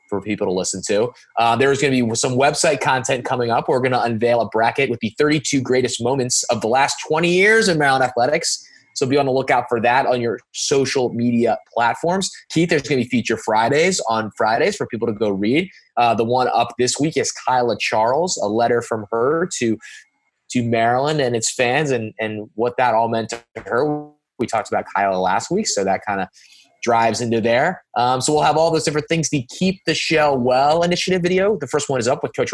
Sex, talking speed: male, 225 wpm